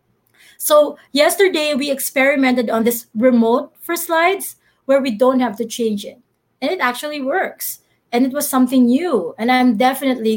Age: 30-49